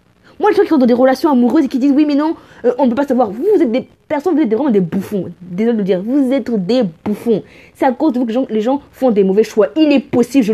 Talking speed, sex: 305 wpm, female